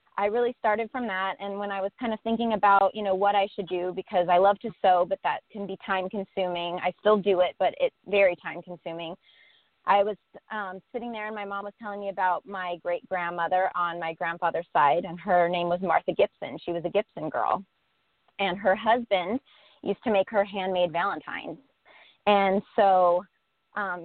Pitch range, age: 180-210 Hz, 30-49